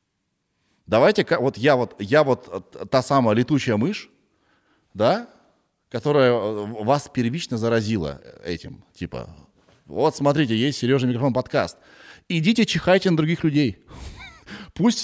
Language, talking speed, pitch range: Russian, 115 wpm, 95-145 Hz